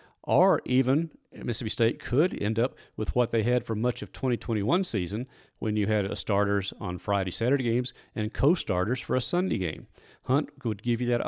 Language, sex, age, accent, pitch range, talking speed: English, male, 40-59, American, 105-130 Hz, 180 wpm